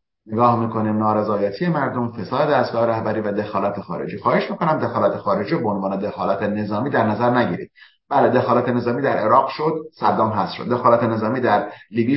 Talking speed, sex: 170 wpm, male